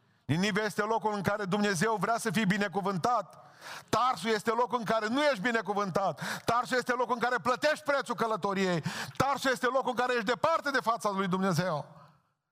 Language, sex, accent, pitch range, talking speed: Romanian, male, native, 145-240 Hz, 175 wpm